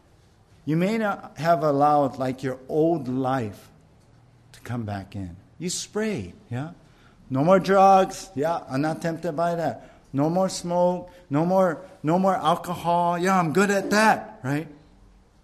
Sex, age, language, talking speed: male, 50-69, English, 150 wpm